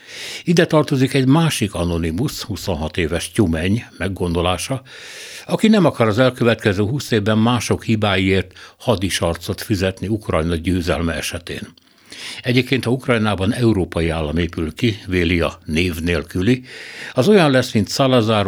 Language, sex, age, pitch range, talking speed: Hungarian, male, 60-79, 90-120 Hz, 125 wpm